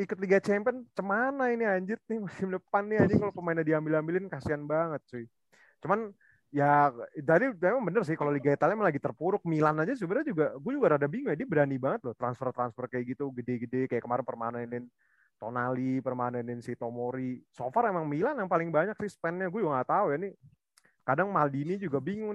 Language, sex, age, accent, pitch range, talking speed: Indonesian, male, 30-49, native, 130-185 Hz, 195 wpm